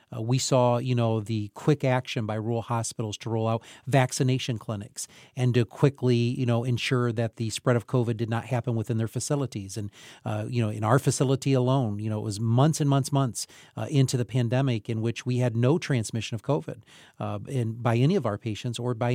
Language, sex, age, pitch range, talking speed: English, male, 40-59, 115-140 Hz, 220 wpm